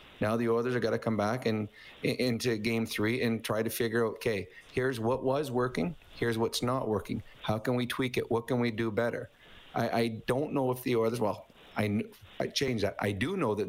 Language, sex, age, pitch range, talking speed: English, male, 40-59, 115-130 Hz, 230 wpm